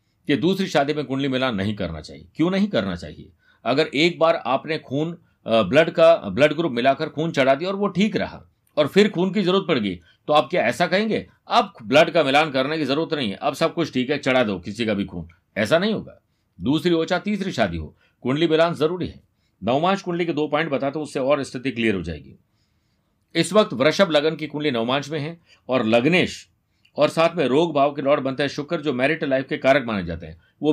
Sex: male